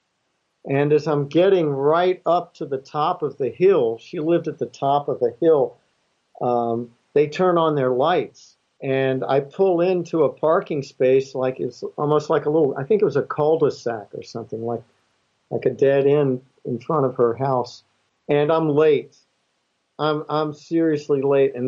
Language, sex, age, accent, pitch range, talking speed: English, male, 50-69, American, 130-165 Hz, 180 wpm